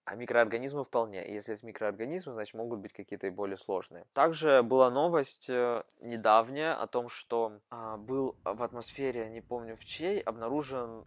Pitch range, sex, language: 115-140 Hz, male, Russian